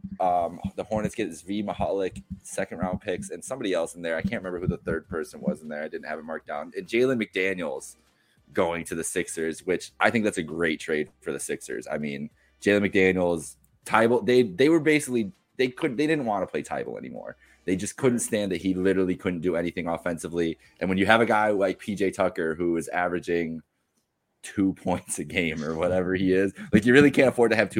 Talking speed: 225 wpm